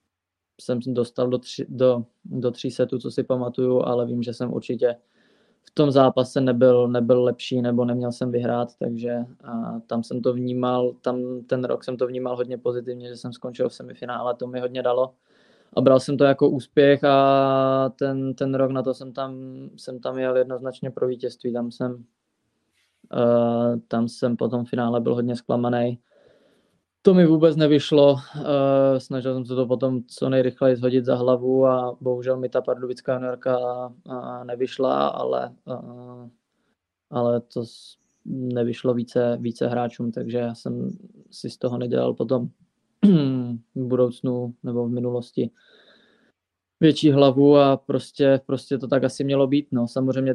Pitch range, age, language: 120-130 Hz, 20-39, Czech